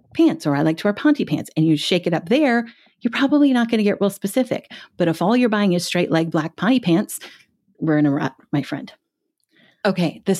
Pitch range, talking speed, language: 165-230 Hz, 235 wpm, English